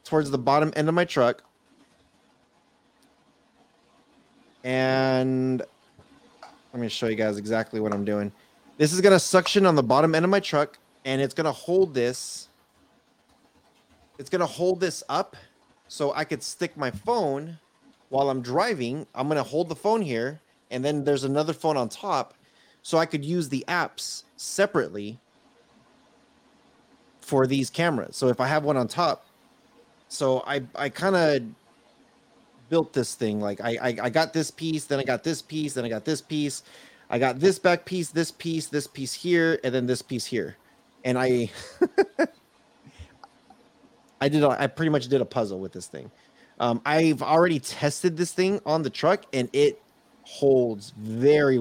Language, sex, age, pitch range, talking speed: English, male, 30-49, 125-165 Hz, 170 wpm